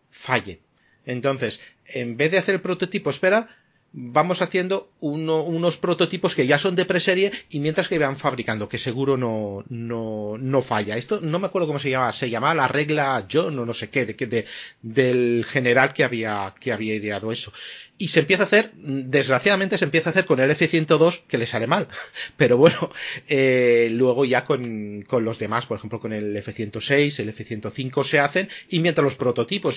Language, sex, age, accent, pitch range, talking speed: Spanish, male, 30-49, Spanish, 115-160 Hz, 195 wpm